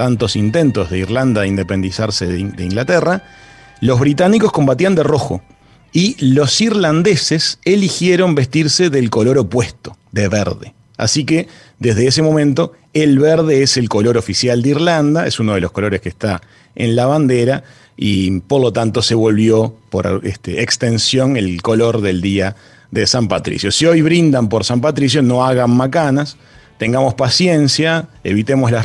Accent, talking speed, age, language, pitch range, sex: Argentinian, 155 wpm, 40-59, Spanish, 110-155 Hz, male